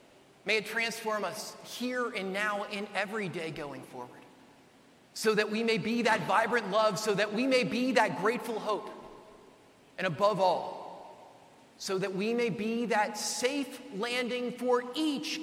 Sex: male